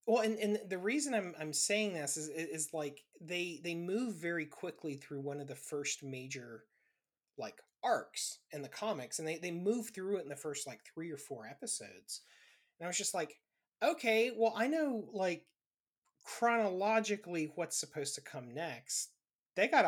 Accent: American